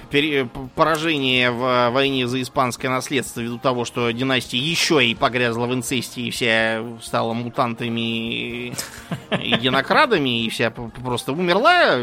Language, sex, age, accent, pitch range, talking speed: Russian, male, 20-39, native, 120-155 Hz, 125 wpm